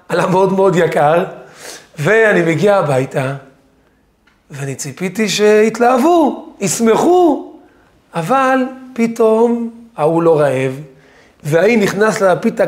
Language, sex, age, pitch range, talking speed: Hebrew, male, 40-59, 155-220 Hz, 90 wpm